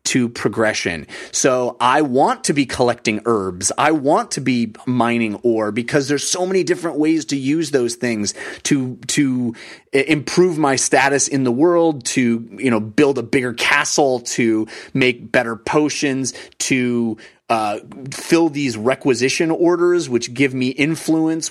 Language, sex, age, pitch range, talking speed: English, male, 30-49, 115-155 Hz, 150 wpm